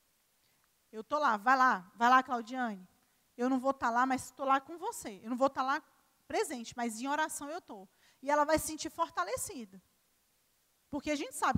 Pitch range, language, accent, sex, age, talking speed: 255-340 Hz, Portuguese, Brazilian, female, 20-39, 210 wpm